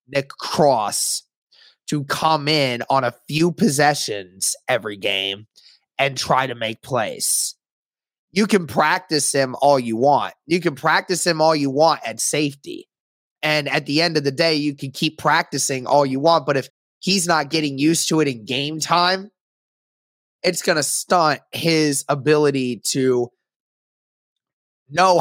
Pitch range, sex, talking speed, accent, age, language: 135-160 Hz, male, 155 wpm, American, 20-39, English